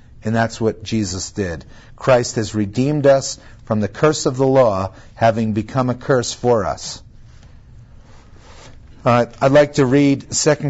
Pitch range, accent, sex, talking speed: 110-140 Hz, American, male, 155 wpm